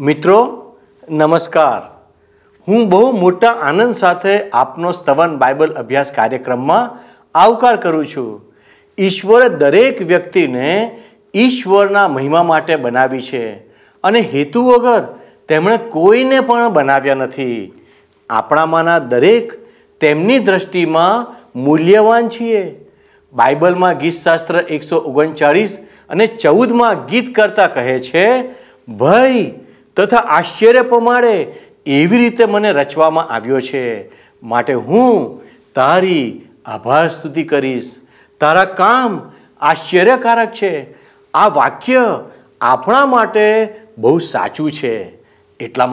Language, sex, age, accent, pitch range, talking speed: Gujarati, male, 50-69, native, 150-230 Hz, 100 wpm